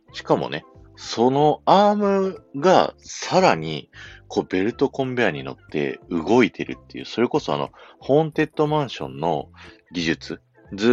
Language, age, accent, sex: Japanese, 40-59, native, male